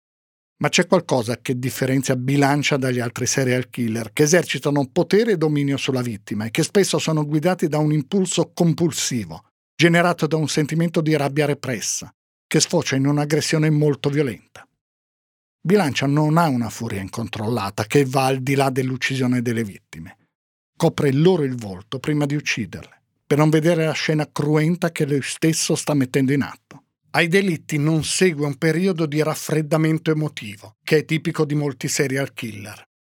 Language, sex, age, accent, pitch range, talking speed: Italian, male, 50-69, native, 130-170 Hz, 160 wpm